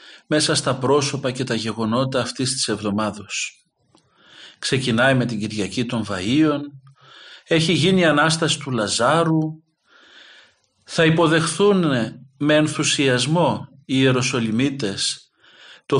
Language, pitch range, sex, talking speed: Greek, 125-160 Hz, male, 105 wpm